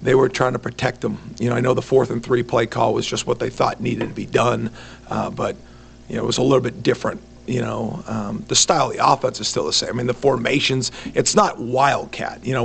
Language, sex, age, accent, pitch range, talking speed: English, male, 50-69, American, 120-140 Hz, 265 wpm